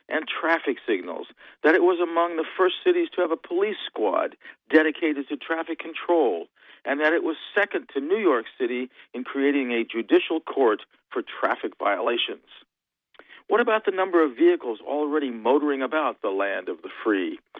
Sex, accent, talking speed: male, American, 170 wpm